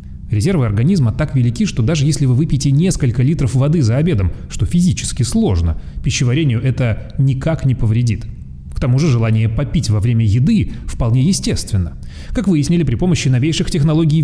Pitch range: 110-150 Hz